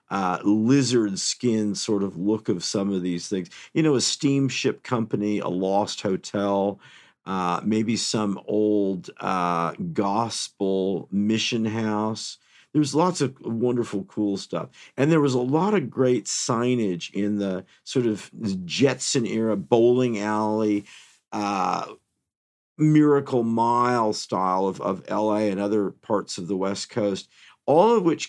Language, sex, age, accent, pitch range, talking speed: English, male, 50-69, American, 100-125 Hz, 140 wpm